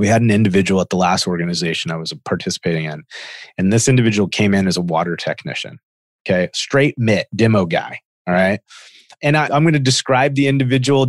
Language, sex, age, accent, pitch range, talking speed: English, male, 30-49, American, 95-115 Hz, 195 wpm